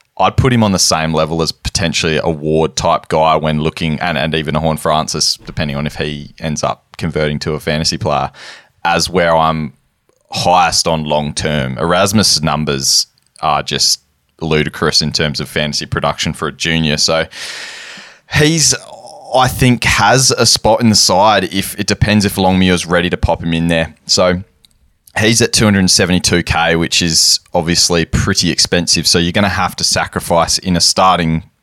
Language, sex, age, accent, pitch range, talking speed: English, male, 20-39, Australian, 80-95 Hz, 175 wpm